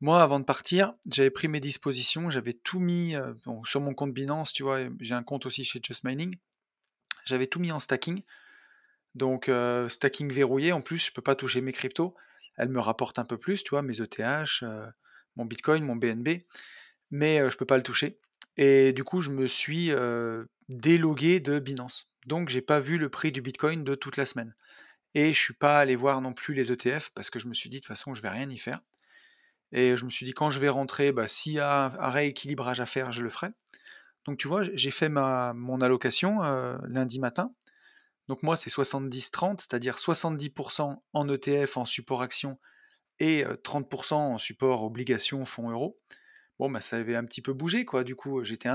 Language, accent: French, French